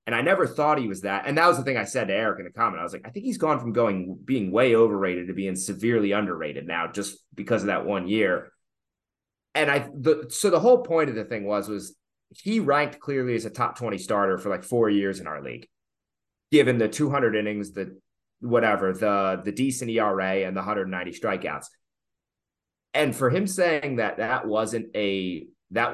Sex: male